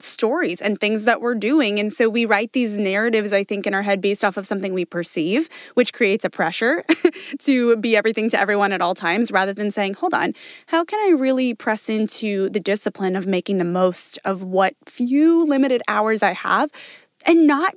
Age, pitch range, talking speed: 20-39, 210-300 Hz, 205 wpm